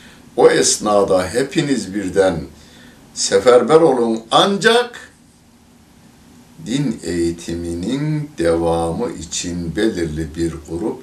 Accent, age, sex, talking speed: native, 60-79, male, 75 wpm